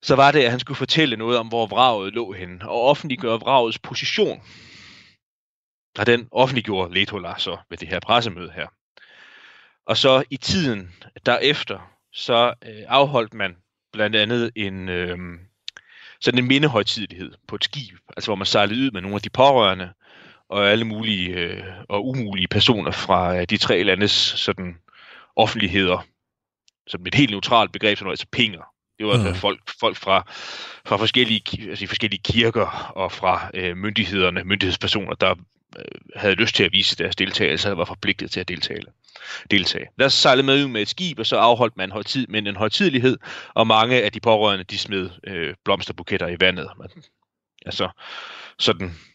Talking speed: 170 wpm